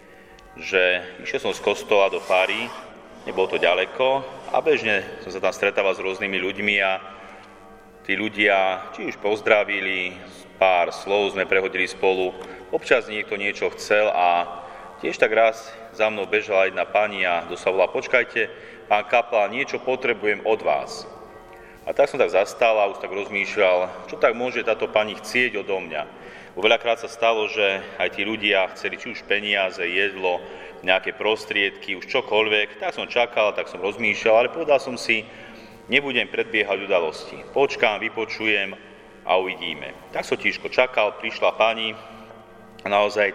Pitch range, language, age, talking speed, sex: 95-115 Hz, Slovak, 30-49, 150 wpm, male